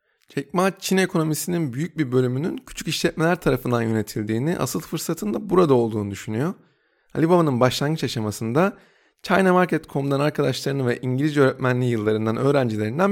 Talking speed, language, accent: 125 wpm, Turkish, native